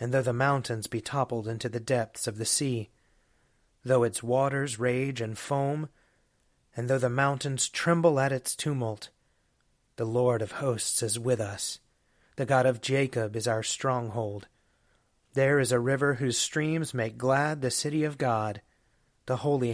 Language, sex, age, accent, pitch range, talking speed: English, male, 30-49, American, 115-140 Hz, 165 wpm